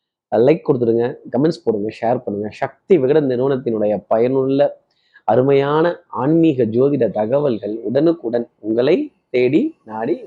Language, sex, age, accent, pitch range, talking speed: Tamil, male, 30-49, native, 120-160 Hz, 105 wpm